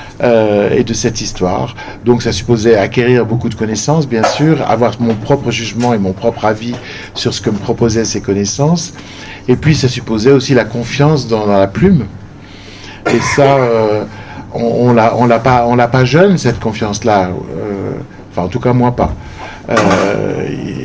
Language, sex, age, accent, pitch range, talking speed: French, male, 60-79, French, 105-130 Hz, 180 wpm